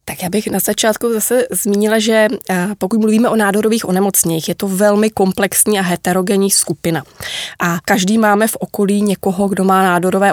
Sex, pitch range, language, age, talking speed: female, 180-205 Hz, Czech, 20-39, 170 wpm